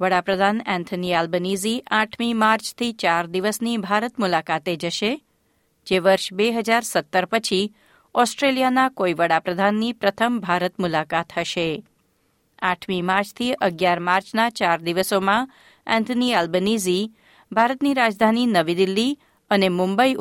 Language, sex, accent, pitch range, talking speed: Gujarati, female, native, 185-230 Hz, 110 wpm